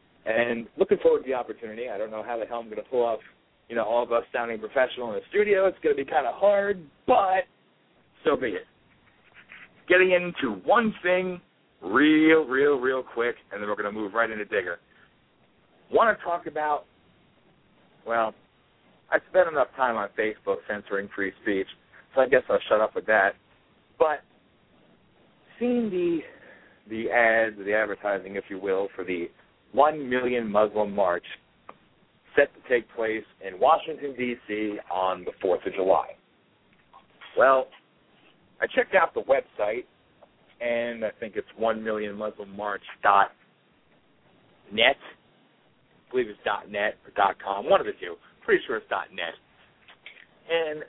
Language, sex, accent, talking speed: English, male, American, 165 wpm